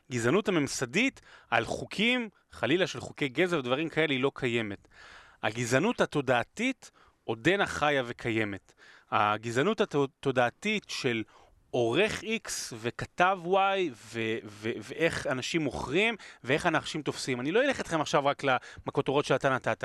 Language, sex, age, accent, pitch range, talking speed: Hebrew, male, 30-49, native, 115-180 Hz, 135 wpm